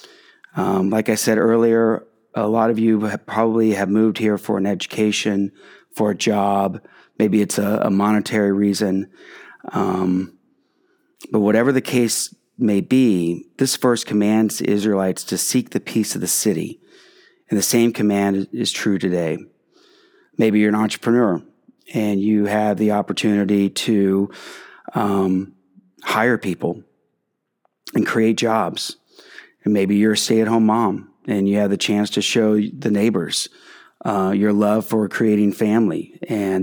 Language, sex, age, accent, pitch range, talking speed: English, male, 30-49, American, 105-115 Hz, 145 wpm